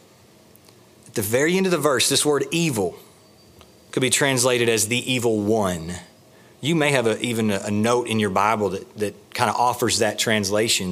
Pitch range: 100-160 Hz